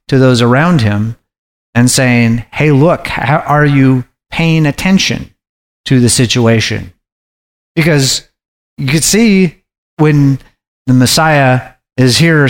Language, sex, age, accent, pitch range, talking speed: English, male, 40-59, American, 110-145 Hz, 120 wpm